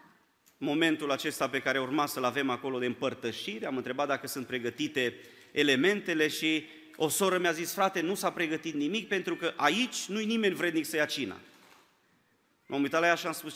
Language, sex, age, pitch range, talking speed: Romanian, male, 30-49, 120-165 Hz, 185 wpm